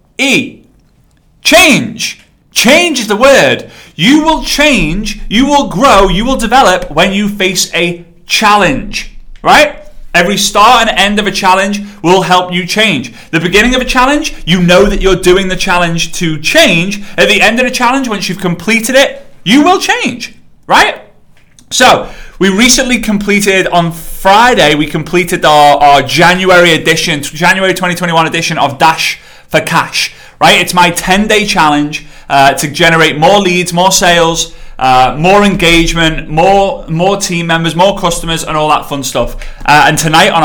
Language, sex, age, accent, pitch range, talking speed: English, male, 30-49, British, 155-210 Hz, 160 wpm